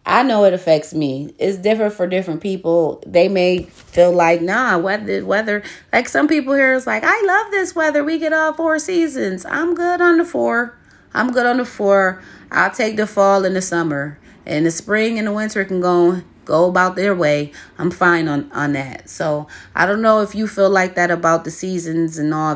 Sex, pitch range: female, 150-195 Hz